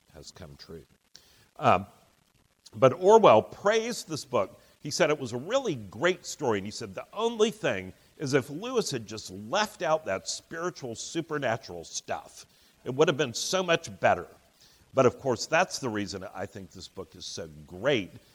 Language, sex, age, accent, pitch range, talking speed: English, male, 60-79, American, 105-155 Hz, 175 wpm